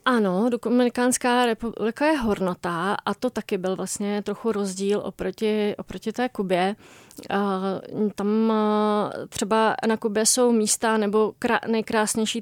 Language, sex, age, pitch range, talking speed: Czech, female, 30-49, 200-235 Hz, 115 wpm